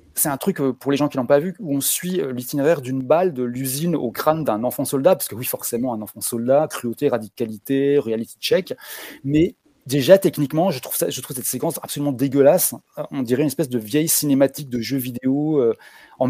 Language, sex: French, male